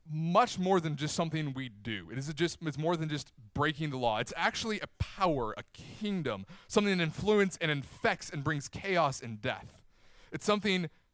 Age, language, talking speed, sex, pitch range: 30-49, English, 190 wpm, male, 125-185 Hz